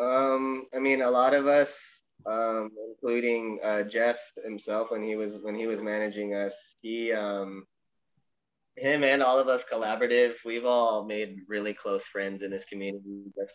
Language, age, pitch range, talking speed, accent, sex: English, 20-39, 105-145 Hz, 170 wpm, American, male